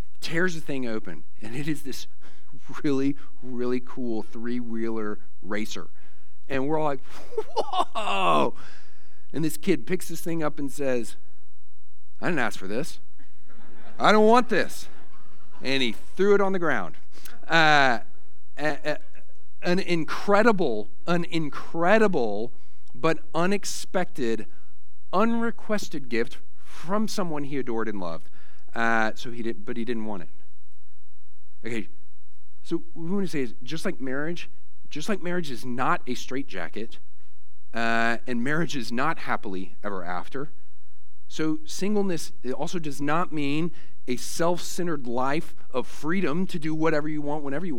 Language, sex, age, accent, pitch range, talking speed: English, male, 50-69, American, 95-160 Hz, 140 wpm